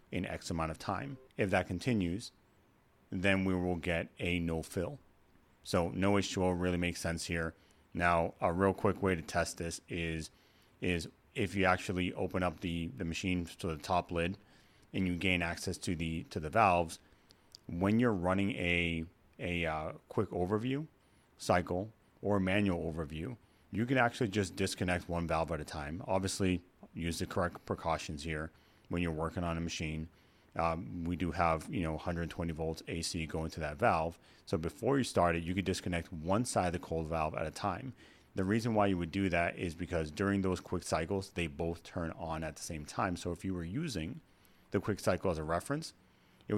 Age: 30-49